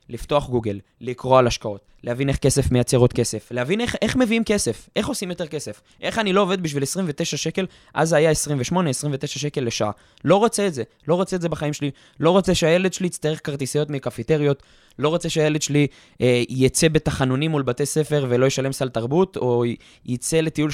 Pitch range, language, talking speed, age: 120-160 Hz, Hebrew, 195 wpm, 20-39